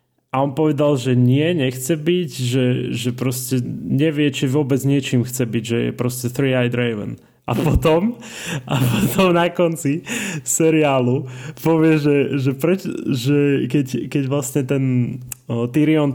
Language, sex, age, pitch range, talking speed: Slovak, male, 20-39, 125-155 Hz, 135 wpm